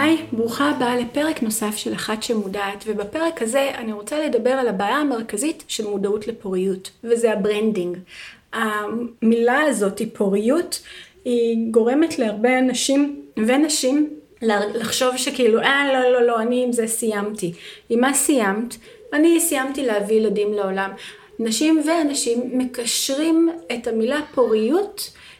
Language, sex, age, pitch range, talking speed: Hebrew, female, 30-49, 215-280 Hz, 130 wpm